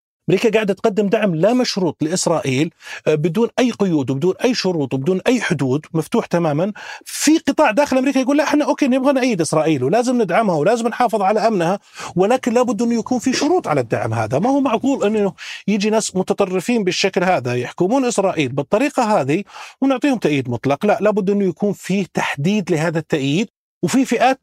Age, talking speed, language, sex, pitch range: 40-59, 170 wpm, Arabic, male, 180-255 Hz